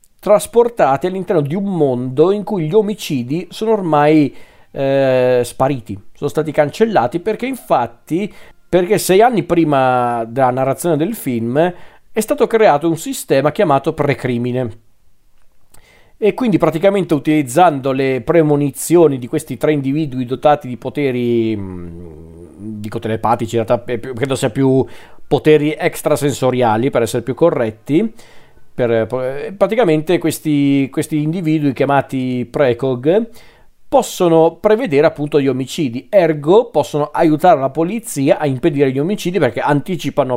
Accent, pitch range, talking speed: native, 125-165 Hz, 120 wpm